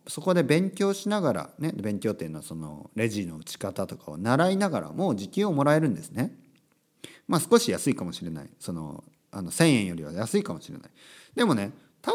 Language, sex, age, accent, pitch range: Japanese, male, 40-59, native, 110-175 Hz